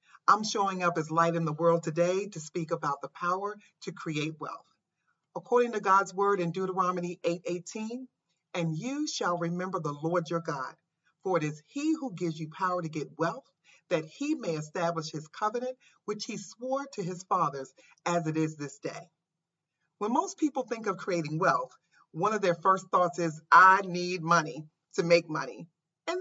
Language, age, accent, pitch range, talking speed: English, 40-59, American, 160-195 Hz, 185 wpm